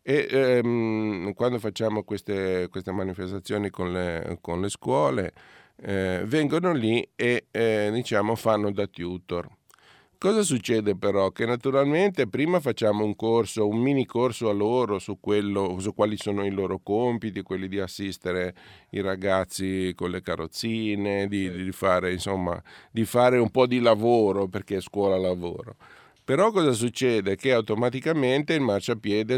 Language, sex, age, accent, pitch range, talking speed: Italian, male, 50-69, native, 95-115 Hz, 145 wpm